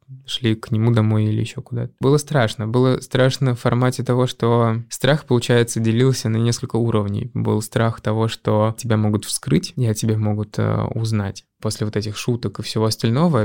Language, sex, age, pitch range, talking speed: Russian, male, 20-39, 110-125 Hz, 185 wpm